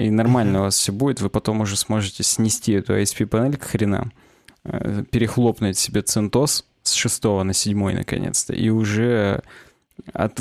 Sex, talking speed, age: male, 150 wpm, 20-39